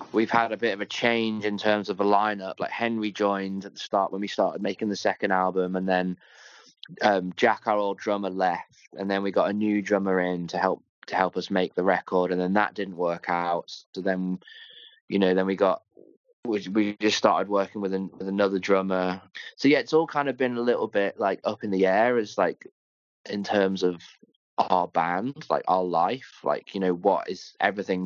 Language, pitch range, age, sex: English, 90-105 Hz, 20-39, male